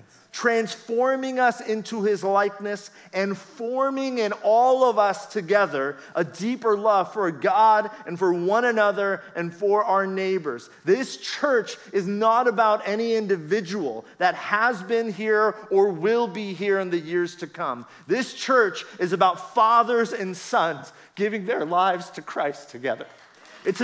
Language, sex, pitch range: English, male, 195-240 Hz